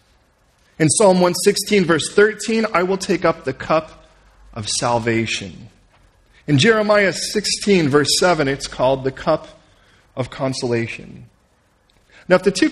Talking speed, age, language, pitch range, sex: 130 wpm, 40-59, English, 105-145 Hz, male